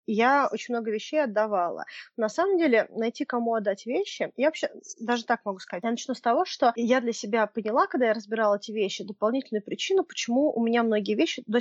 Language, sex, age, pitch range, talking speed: Russian, female, 20-39, 210-265 Hz, 205 wpm